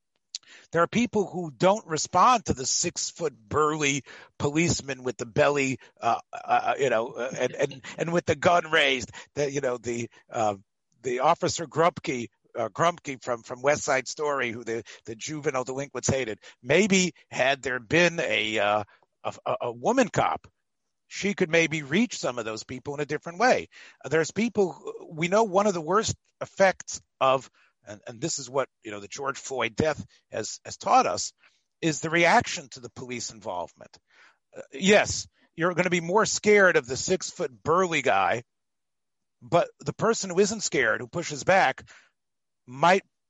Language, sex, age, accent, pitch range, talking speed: English, male, 50-69, American, 130-180 Hz, 175 wpm